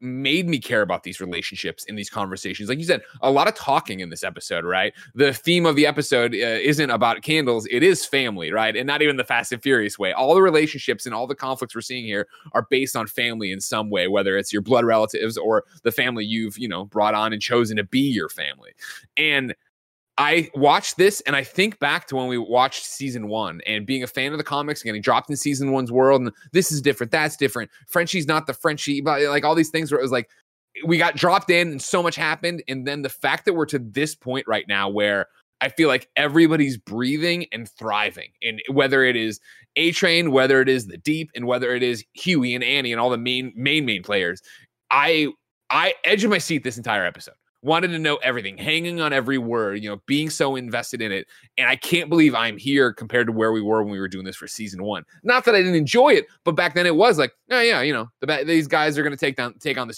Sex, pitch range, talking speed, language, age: male, 115-155 Hz, 245 wpm, English, 20-39